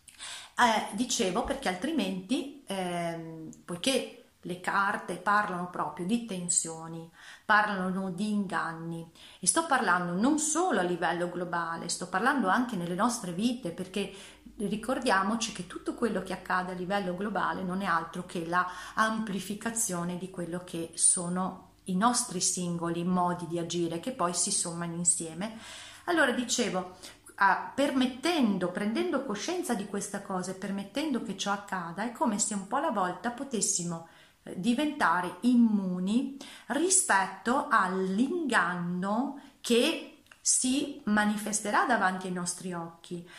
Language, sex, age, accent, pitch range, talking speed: Italian, female, 40-59, native, 180-240 Hz, 130 wpm